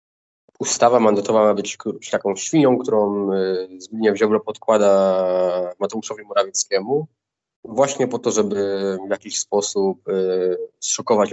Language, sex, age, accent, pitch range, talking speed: Polish, male, 20-39, native, 100-115 Hz, 105 wpm